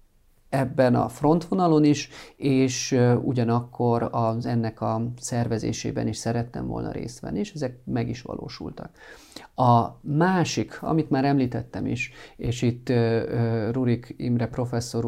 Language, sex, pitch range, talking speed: Hungarian, male, 115-135 Hz, 125 wpm